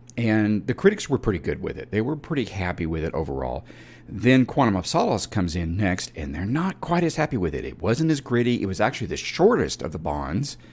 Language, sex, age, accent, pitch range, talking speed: English, male, 50-69, American, 90-140 Hz, 235 wpm